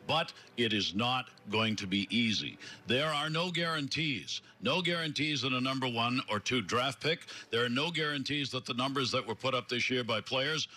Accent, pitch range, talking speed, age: American, 115-145 Hz, 205 wpm, 60-79